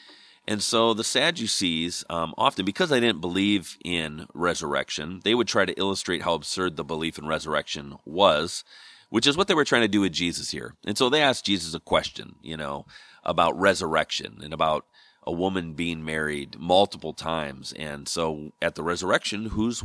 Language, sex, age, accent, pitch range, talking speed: English, male, 40-59, American, 85-110 Hz, 180 wpm